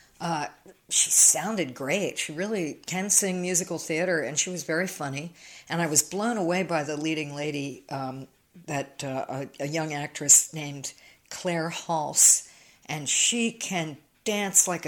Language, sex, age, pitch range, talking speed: English, female, 50-69, 145-180 Hz, 155 wpm